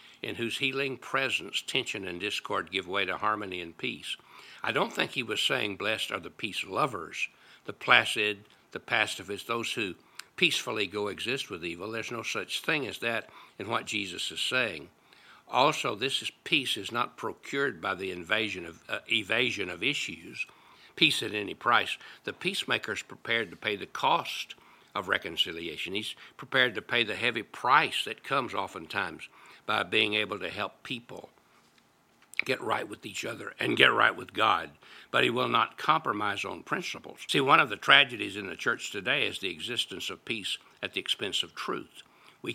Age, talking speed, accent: 60-79, 180 wpm, American